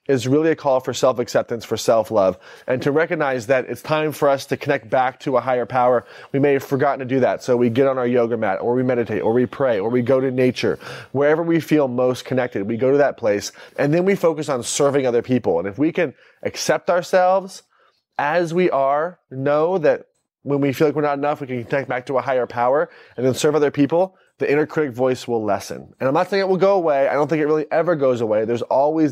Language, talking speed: English, 250 wpm